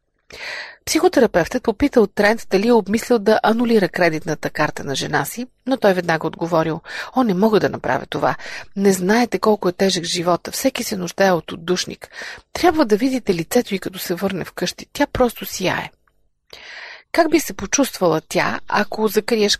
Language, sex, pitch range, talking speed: Bulgarian, female, 175-220 Hz, 165 wpm